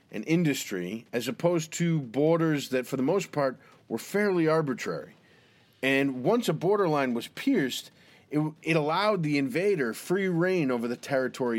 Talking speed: 155 wpm